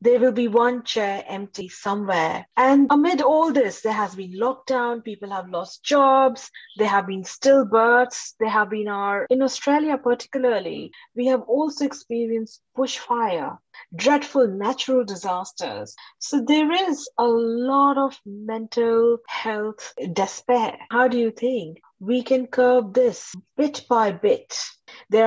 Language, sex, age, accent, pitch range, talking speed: English, female, 30-49, Indian, 190-250 Hz, 140 wpm